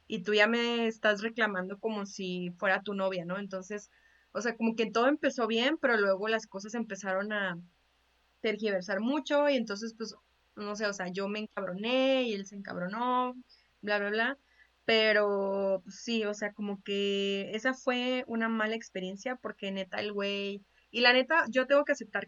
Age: 20-39